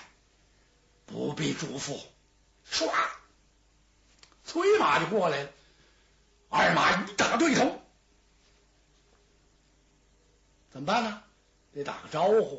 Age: 60-79